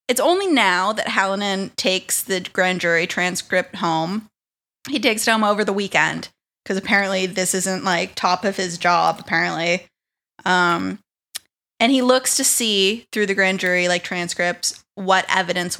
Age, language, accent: 10-29, English, American